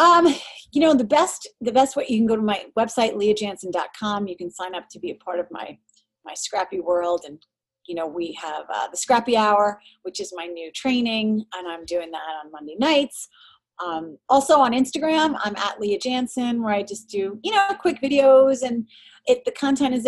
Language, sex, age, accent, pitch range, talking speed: English, female, 30-49, American, 180-280 Hz, 210 wpm